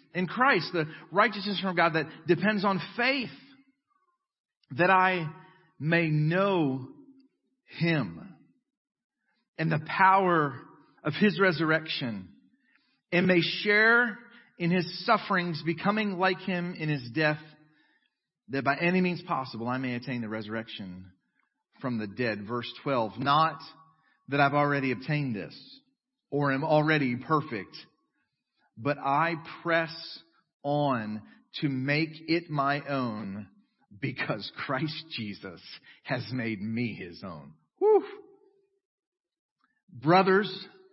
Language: English